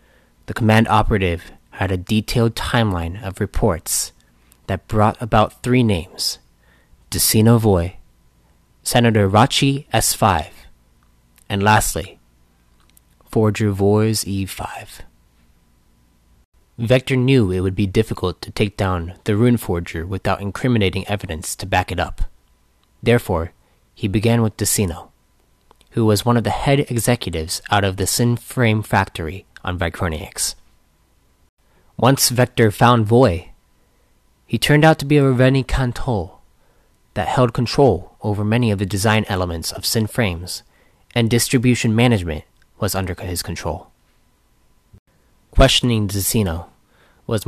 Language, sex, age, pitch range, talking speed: English, male, 30-49, 85-115 Hz, 120 wpm